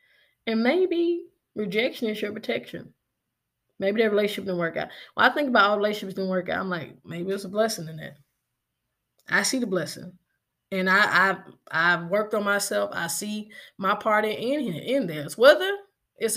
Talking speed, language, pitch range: 185 wpm, English, 185-240 Hz